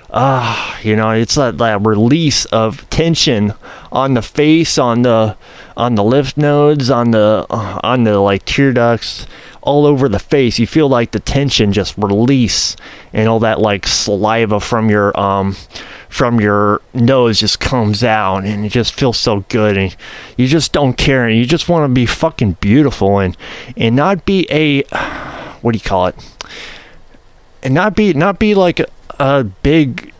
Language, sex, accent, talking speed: English, male, American, 180 wpm